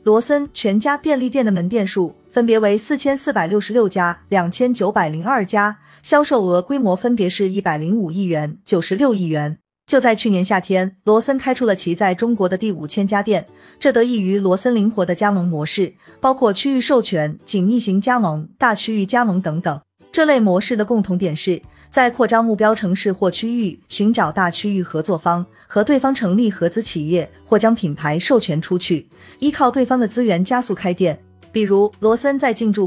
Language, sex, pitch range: Chinese, female, 175-230 Hz